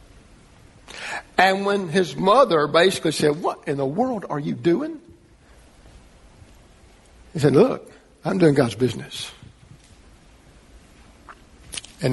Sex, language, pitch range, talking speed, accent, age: male, English, 110-150 Hz, 105 wpm, American, 60-79